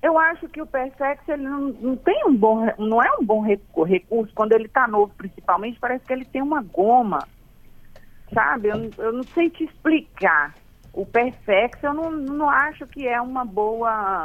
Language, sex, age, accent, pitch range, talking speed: Portuguese, female, 40-59, Brazilian, 190-255 Hz, 185 wpm